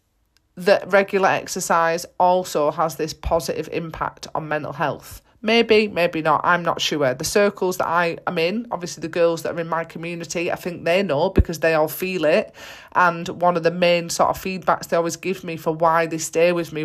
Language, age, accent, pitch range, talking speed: English, 30-49, British, 170-220 Hz, 205 wpm